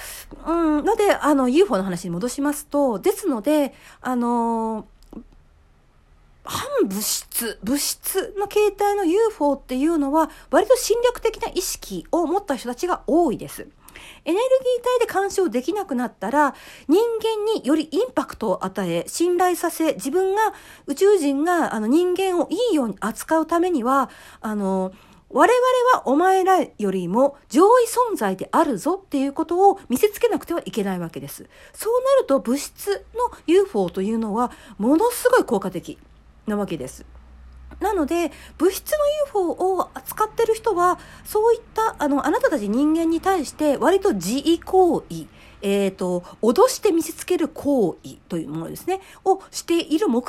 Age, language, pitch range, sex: 40-59, Japanese, 235-385 Hz, female